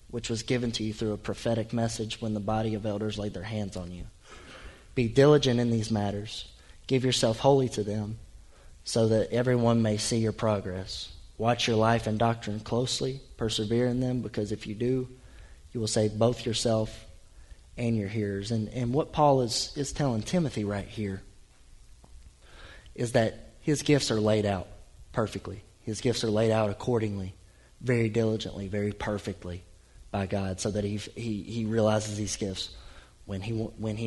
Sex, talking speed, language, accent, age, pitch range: male, 175 wpm, English, American, 20-39, 95-115 Hz